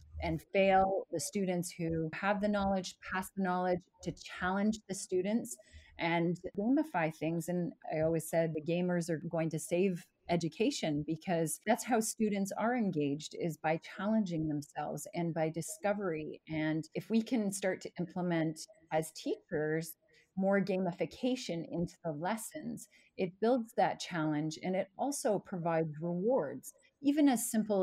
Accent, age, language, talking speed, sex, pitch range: American, 30-49, English, 145 wpm, female, 160-205 Hz